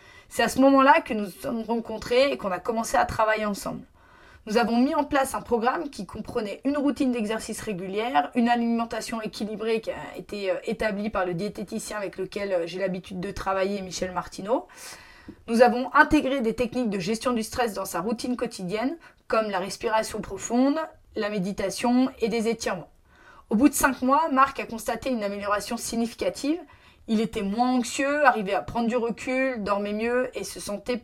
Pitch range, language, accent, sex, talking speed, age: 205-255 Hz, French, French, female, 180 wpm, 20-39